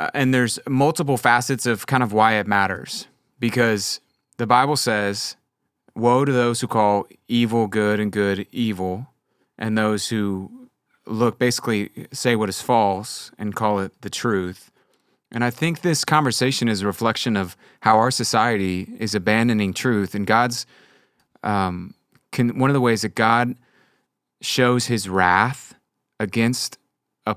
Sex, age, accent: male, 30-49, American